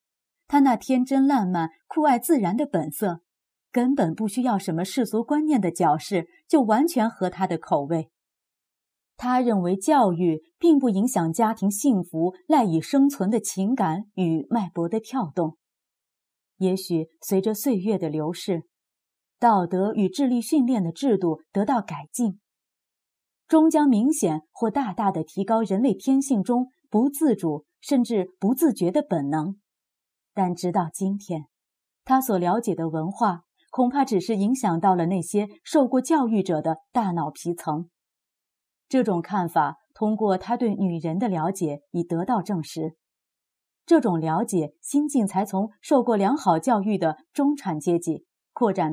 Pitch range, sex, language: 170-255 Hz, female, Chinese